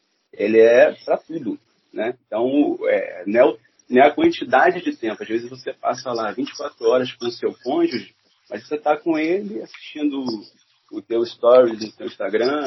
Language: Portuguese